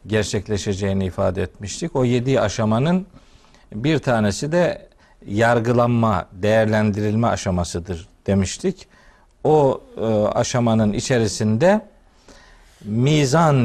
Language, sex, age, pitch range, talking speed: Turkish, male, 50-69, 105-130 Hz, 75 wpm